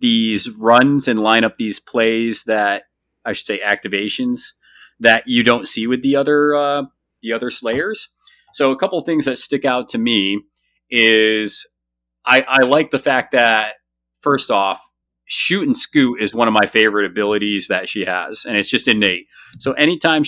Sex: male